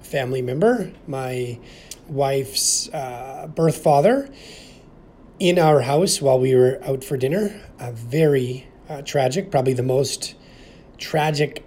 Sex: male